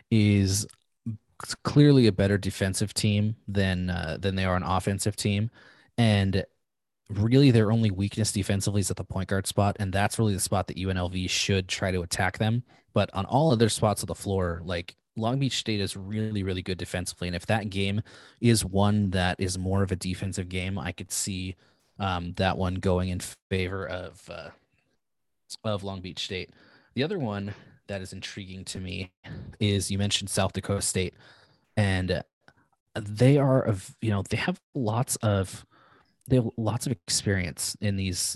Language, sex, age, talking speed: English, male, 20-39, 180 wpm